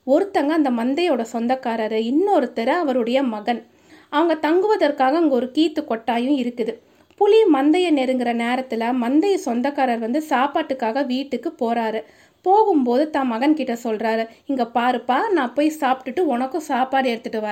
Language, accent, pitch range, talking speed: Tamil, native, 255-350 Hz, 70 wpm